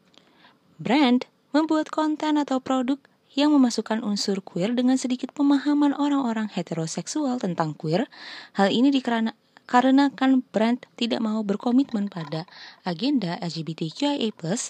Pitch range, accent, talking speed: 185-265 Hz, native, 105 wpm